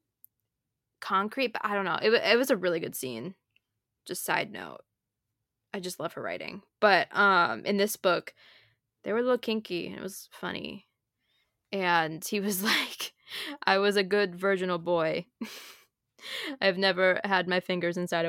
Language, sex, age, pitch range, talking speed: English, female, 10-29, 175-215 Hz, 160 wpm